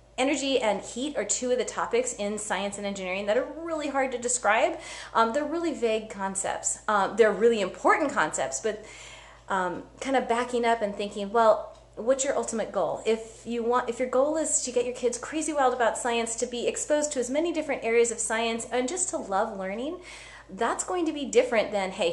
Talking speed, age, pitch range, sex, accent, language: 210 wpm, 30-49, 200-265 Hz, female, American, English